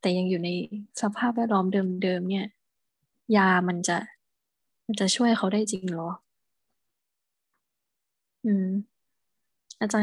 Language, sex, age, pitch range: Thai, female, 20-39, 190-225 Hz